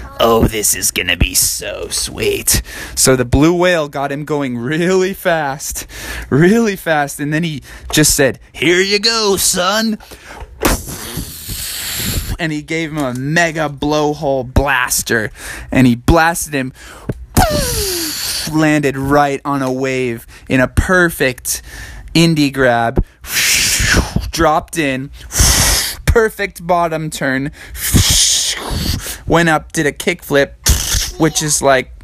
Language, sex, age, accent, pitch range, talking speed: English, male, 20-39, American, 130-185 Hz, 115 wpm